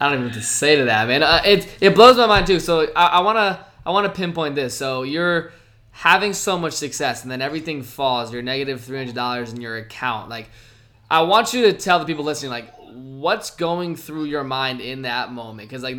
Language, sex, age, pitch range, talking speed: English, male, 20-39, 130-160 Hz, 235 wpm